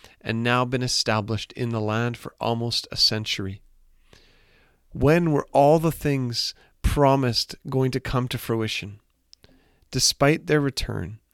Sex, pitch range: male, 110-135 Hz